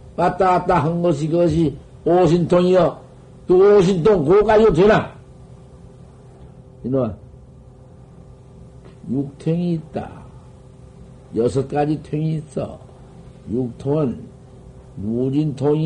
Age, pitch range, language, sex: 60-79, 130-180 Hz, Korean, male